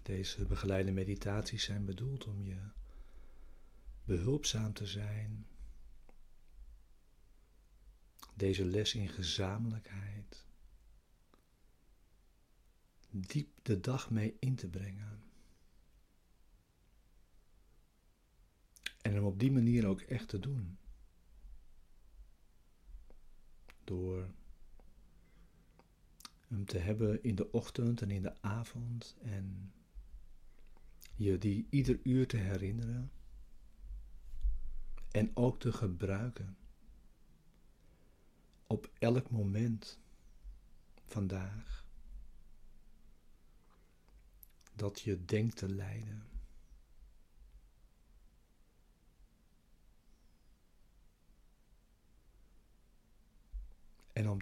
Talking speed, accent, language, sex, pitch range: 70 wpm, Dutch, Dutch, male, 85-110 Hz